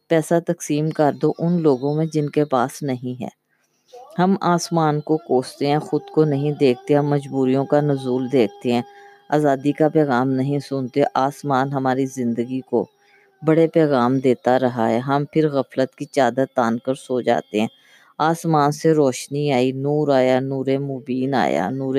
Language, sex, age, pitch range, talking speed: Urdu, female, 20-39, 130-160 Hz, 165 wpm